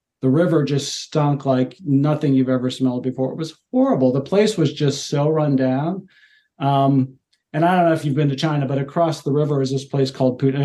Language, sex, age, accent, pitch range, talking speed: English, male, 40-59, American, 130-160 Hz, 220 wpm